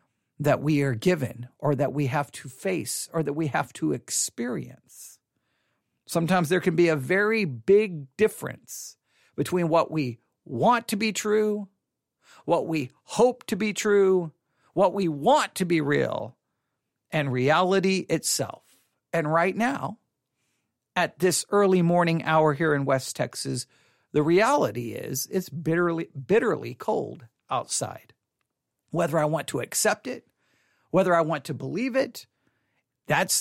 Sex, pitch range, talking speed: male, 145-200 Hz, 140 wpm